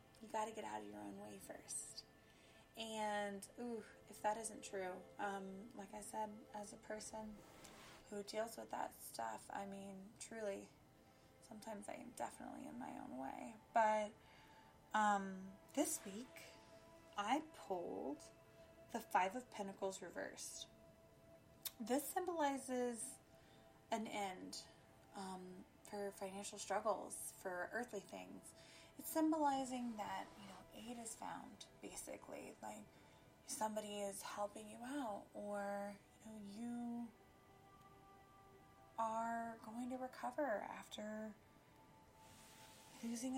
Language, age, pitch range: English, 20-39, 185-230 Hz